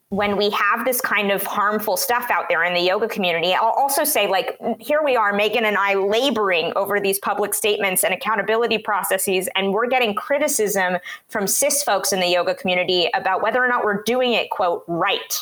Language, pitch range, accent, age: English, 185-240 Hz, American, 20-39